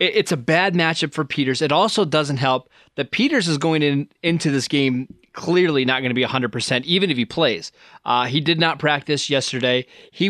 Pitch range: 125-155 Hz